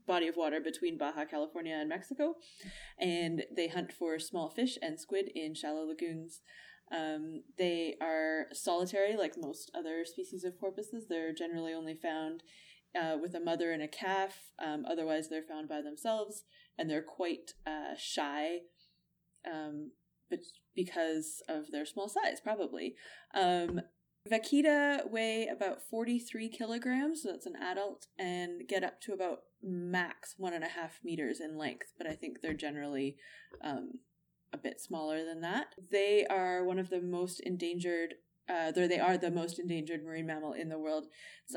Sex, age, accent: female, 20-39, American